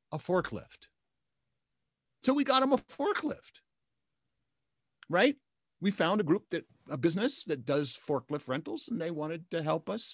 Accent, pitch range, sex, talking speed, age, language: American, 145-185 Hz, male, 155 wpm, 50-69, English